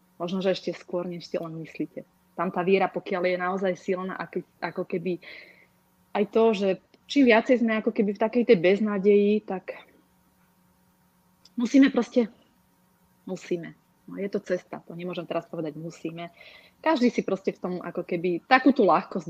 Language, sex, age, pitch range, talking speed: Czech, female, 30-49, 180-225 Hz, 160 wpm